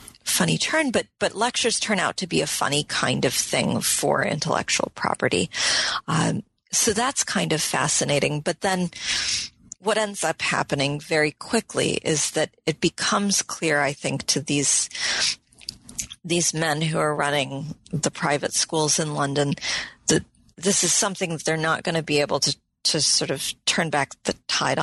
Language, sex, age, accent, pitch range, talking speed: English, female, 40-59, American, 145-185 Hz, 165 wpm